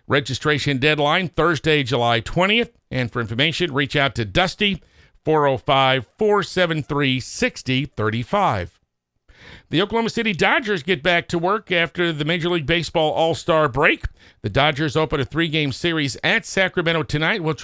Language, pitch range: English, 130-175 Hz